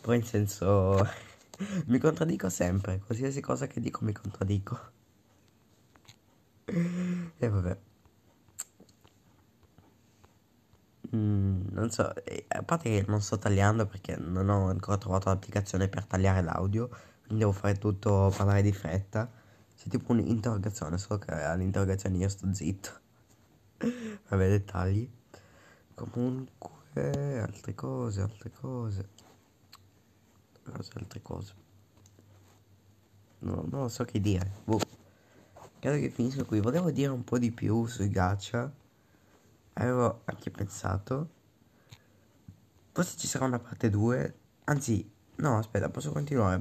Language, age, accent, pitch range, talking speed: Italian, 20-39, native, 100-120 Hz, 115 wpm